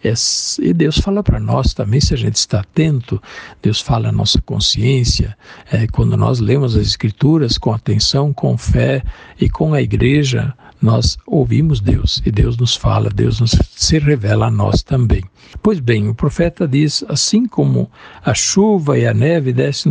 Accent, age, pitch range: Brazilian, 60-79, 110-150 Hz